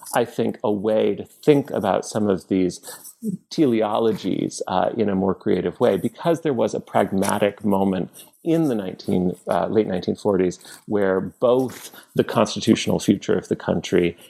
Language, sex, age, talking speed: English, male, 40-59, 150 wpm